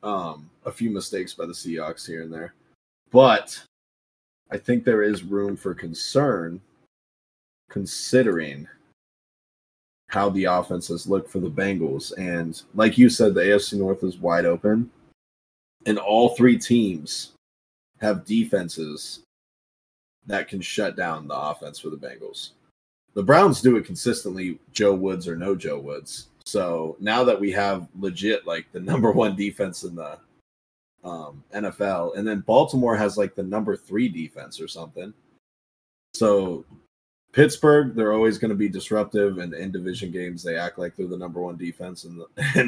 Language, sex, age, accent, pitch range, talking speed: English, male, 20-39, American, 85-110 Hz, 155 wpm